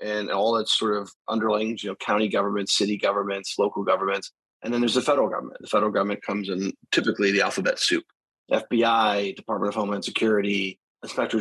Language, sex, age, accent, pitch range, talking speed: English, male, 30-49, American, 100-120 Hz, 190 wpm